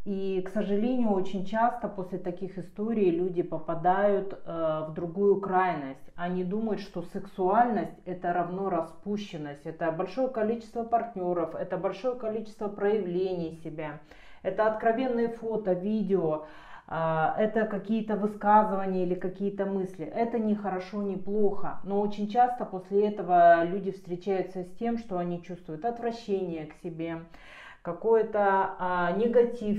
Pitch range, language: 175-205 Hz, Russian